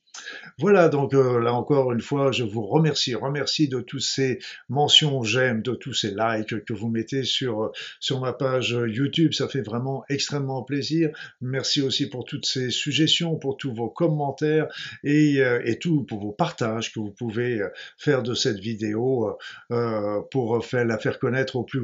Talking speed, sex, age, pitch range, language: 175 wpm, male, 50-69, 110-140 Hz, French